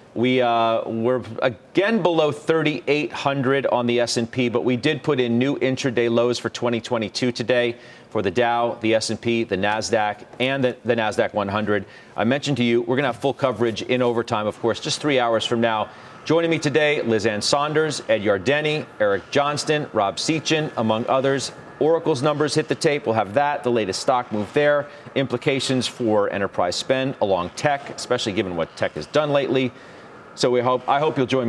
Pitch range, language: 110-140 Hz, English